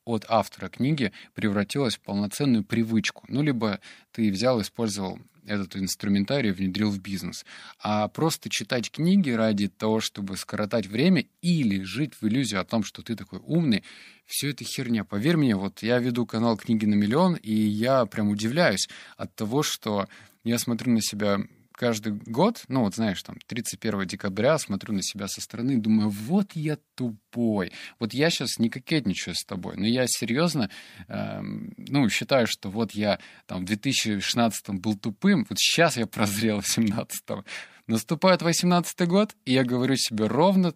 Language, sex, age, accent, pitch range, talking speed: Russian, male, 20-39, native, 105-145 Hz, 165 wpm